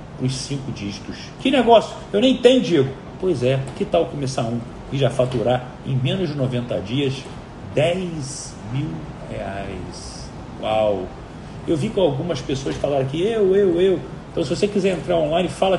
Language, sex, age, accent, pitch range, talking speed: Portuguese, male, 40-59, Brazilian, 125-180 Hz, 165 wpm